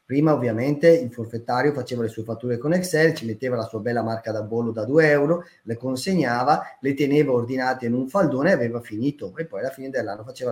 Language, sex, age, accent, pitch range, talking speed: Italian, male, 30-49, native, 115-160 Hz, 215 wpm